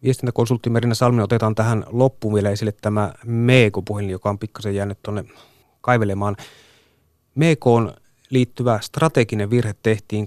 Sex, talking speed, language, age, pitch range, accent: male, 125 wpm, Finnish, 30-49, 105-120 Hz, native